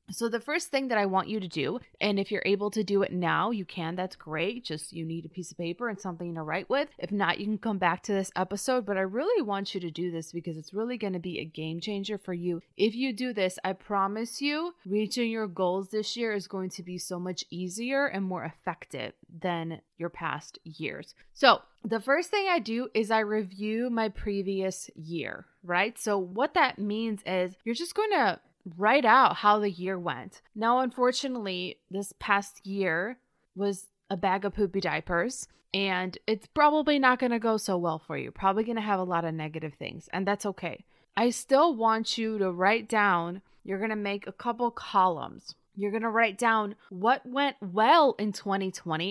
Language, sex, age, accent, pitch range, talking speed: English, female, 20-39, American, 180-235 Hz, 210 wpm